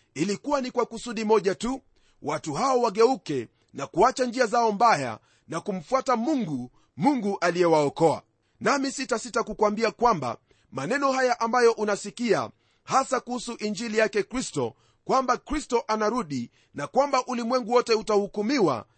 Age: 40-59